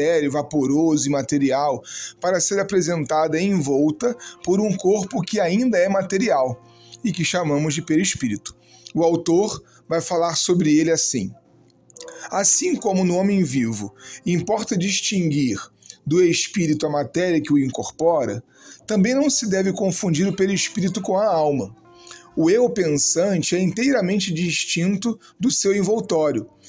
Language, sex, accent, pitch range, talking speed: Portuguese, male, Brazilian, 155-200 Hz, 135 wpm